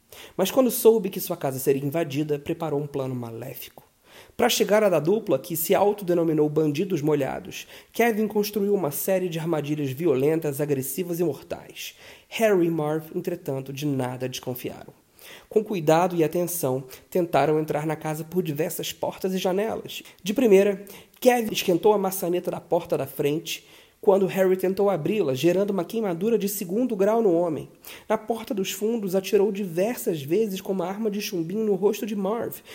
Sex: male